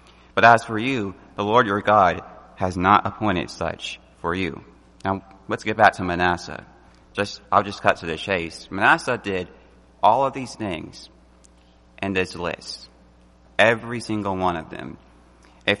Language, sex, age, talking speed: English, male, 30-49, 160 wpm